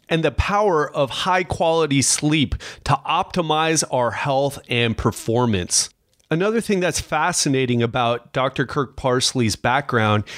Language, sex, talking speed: English, male, 120 wpm